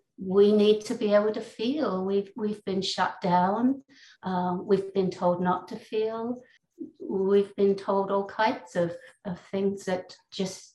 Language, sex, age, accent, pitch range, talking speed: English, female, 60-79, British, 185-215 Hz, 160 wpm